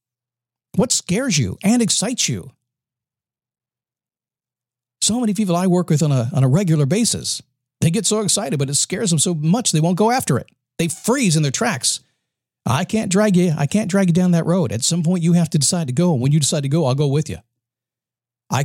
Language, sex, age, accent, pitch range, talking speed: English, male, 50-69, American, 130-175 Hz, 220 wpm